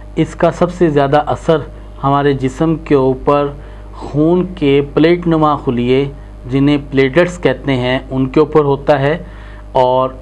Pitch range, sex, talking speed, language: 130-160 Hz, male, 145 wpm, Urdu